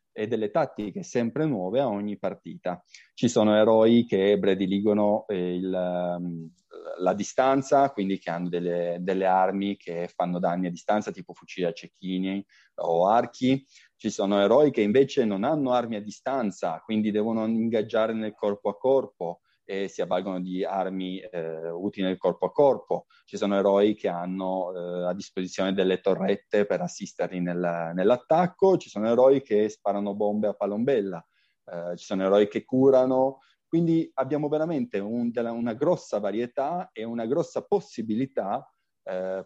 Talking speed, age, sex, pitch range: 150 wpm, 30-49, male, 95-135 Hz